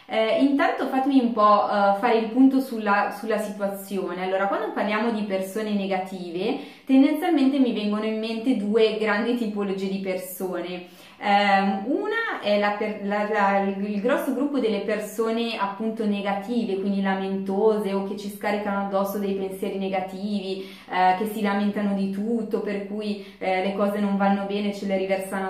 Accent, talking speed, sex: native, 160 wpm, female